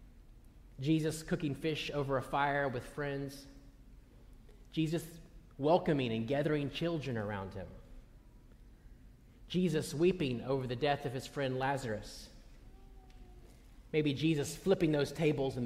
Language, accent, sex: English, American, male